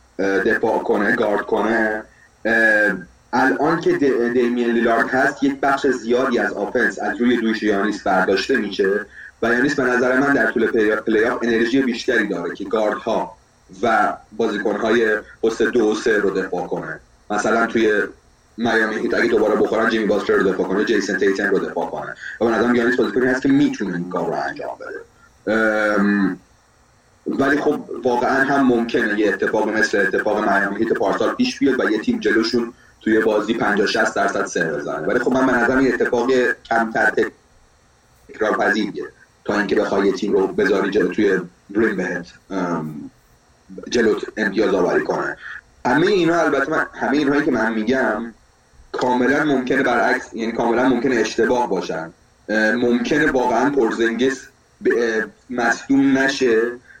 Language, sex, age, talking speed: Persian, male, 30-49, 150 wpm